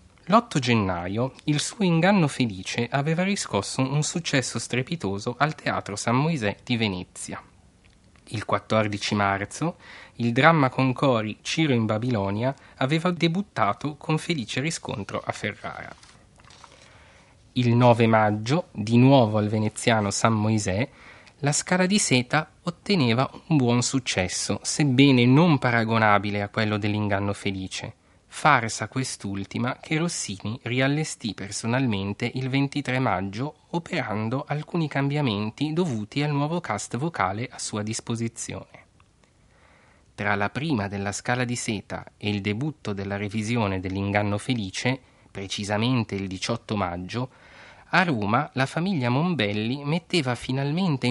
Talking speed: 120 wpm